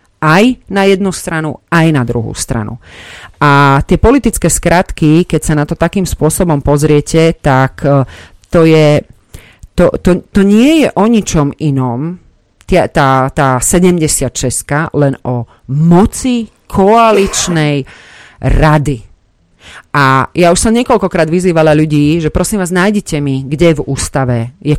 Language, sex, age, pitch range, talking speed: Slovak, female, 40-59, 125-165 Hz, 135 wpm